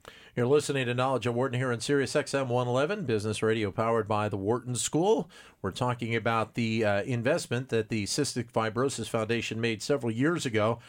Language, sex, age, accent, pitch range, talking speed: English, male, 40-59, American, 110-135 Hz, 180 wpm